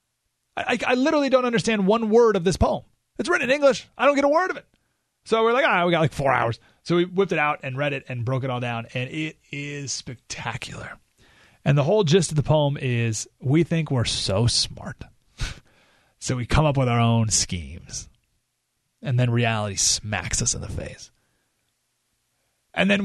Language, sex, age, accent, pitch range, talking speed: English, male, 30-49, American, 125-190 Hz, 205 wpm